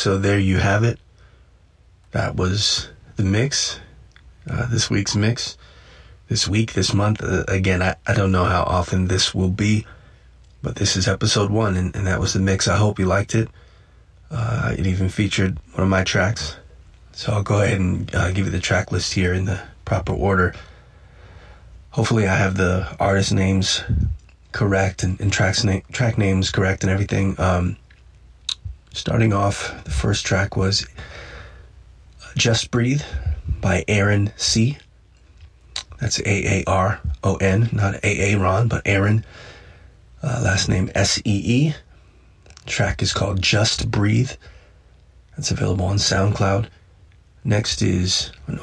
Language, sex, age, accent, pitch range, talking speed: English, male, 30-49, American, 95-105 Hz, 145 wpm